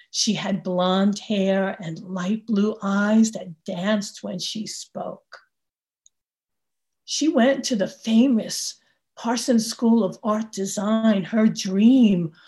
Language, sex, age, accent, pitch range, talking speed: English, female, 50-69, American, 195-250 Hz, 120 wpm